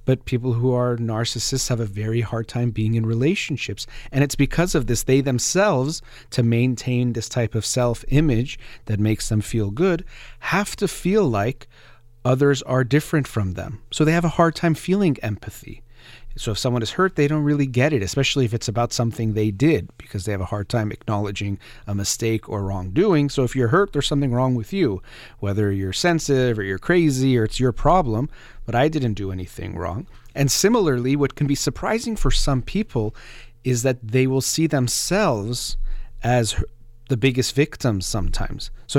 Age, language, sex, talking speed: 30-49, English, male, 190 wpm